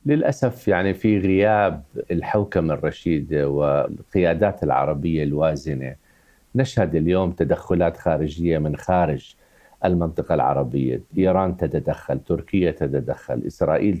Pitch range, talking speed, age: 85-135 Hz, 95 wpm, 50-69